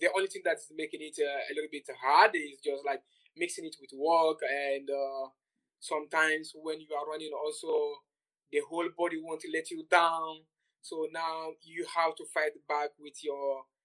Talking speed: 180 wpm